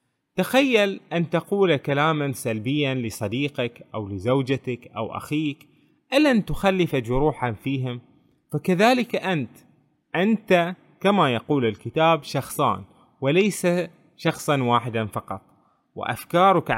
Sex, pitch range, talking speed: male, 125-175 Hz, 95 wpm